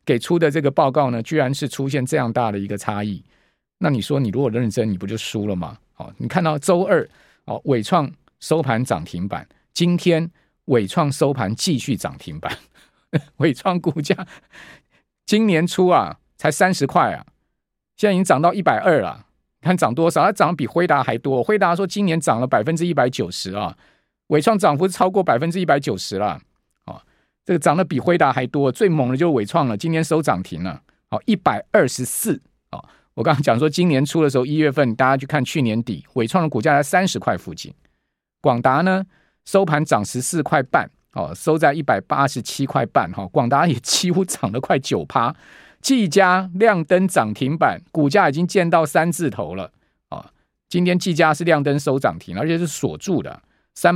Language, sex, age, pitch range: Chinese, male, 50-69, 130-180 Hz